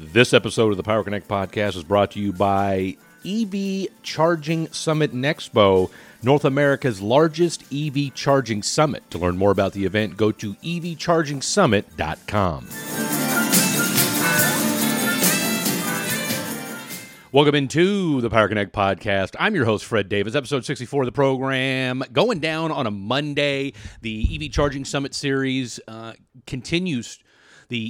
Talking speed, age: 135 wpm, 40-59